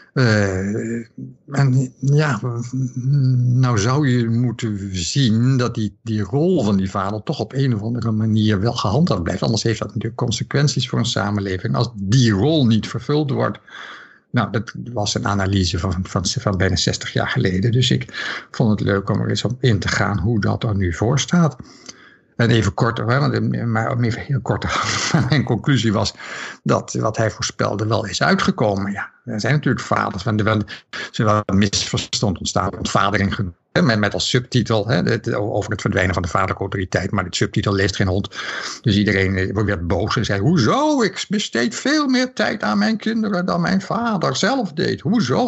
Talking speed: 180 wpm